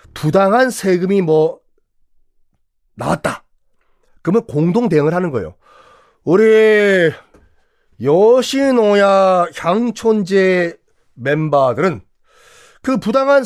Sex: male